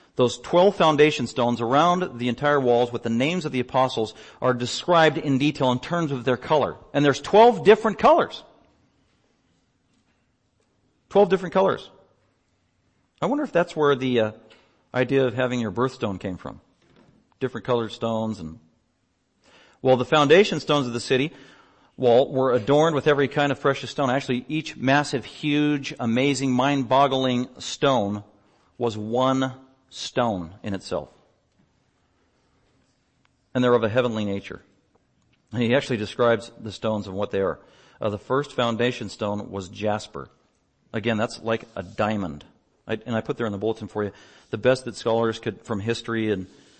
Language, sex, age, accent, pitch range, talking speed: English, male, 40-59, American, 105-135 Hz, 155 wpm